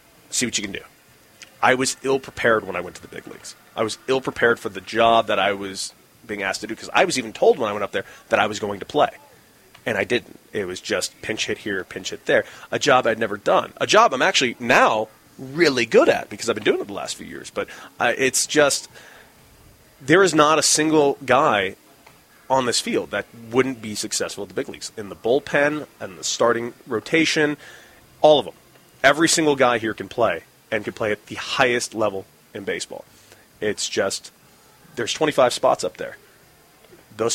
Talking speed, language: 210 wpm, English